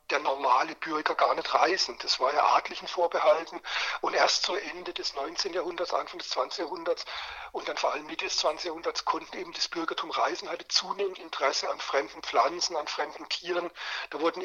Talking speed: 190 wpm